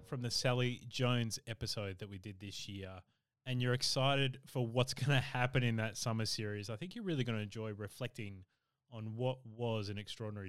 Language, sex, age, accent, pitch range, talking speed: English, male, 20-39, Australian, 105-125 Hz, 200 wpm